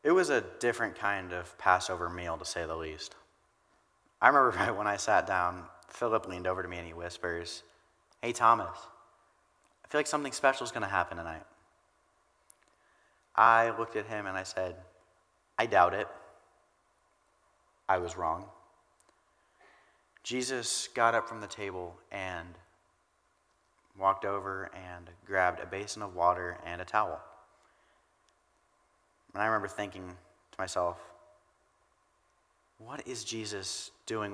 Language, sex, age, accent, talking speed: English, male, 30-49, American, 140 wpm